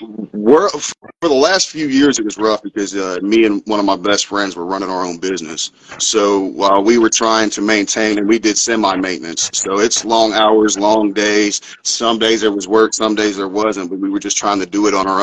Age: 30-49